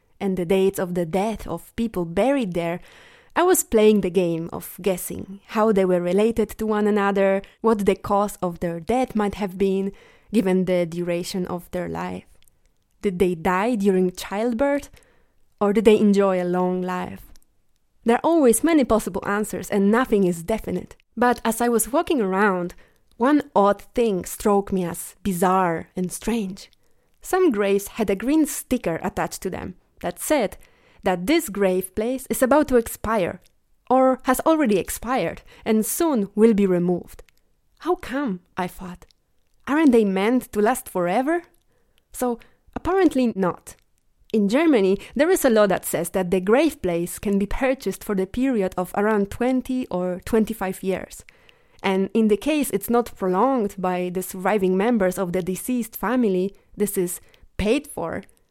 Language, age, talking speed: English, 20-39, 165 wpm